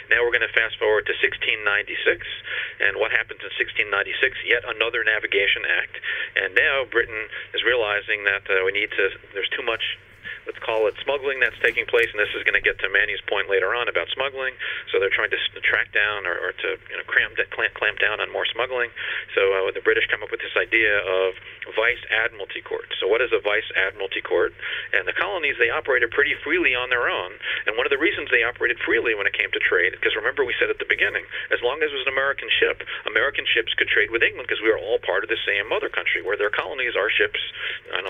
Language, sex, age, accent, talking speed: English, male, 40-59, American, 230 wpm